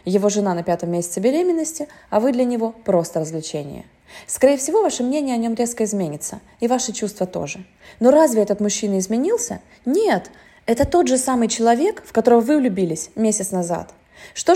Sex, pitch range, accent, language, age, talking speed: female, 175-255 Hz, native, Russian, 20-39, 175 wpm